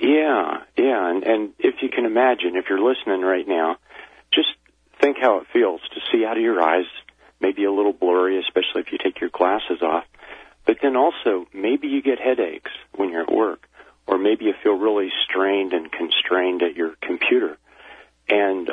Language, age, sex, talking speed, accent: English, 40-59, male, 185 wpm, American